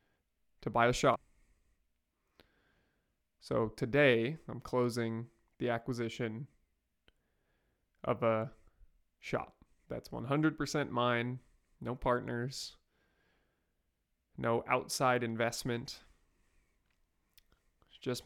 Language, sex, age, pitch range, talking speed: English, male, 20-39, 90-130 Hz, 75 wpm